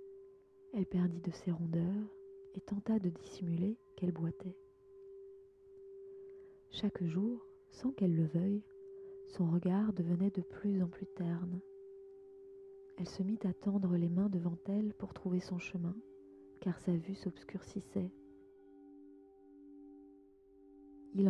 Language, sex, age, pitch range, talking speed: French, female, 30-49, 175-290 Hz, 120 wpm